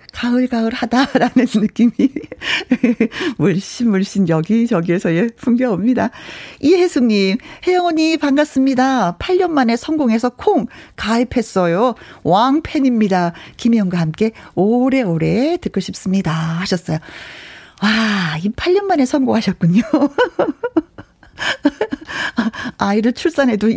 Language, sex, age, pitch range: Korean, female, 40-59, 185-280 Hz